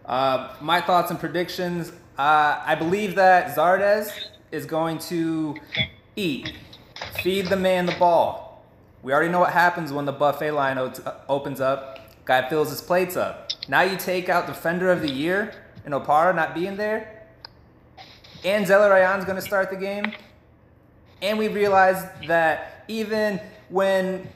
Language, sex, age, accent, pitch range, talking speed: English, male, 20-39, American, 145-185 Hz, 155 wpm